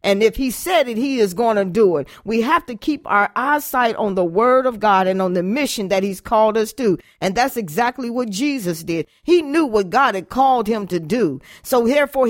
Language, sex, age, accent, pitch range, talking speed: English, female, 40-59, American, 200-280 Hz, 235 wpm